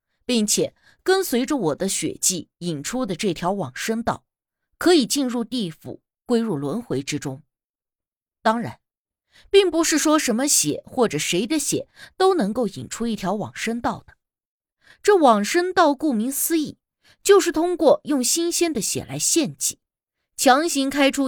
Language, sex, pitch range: Chinese, female, 185-285 Hz